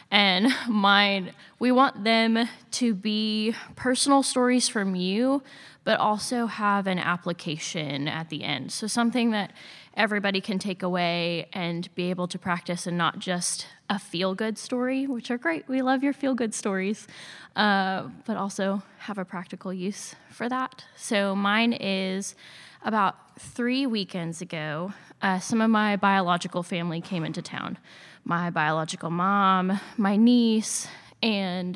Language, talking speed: English, 145 wpm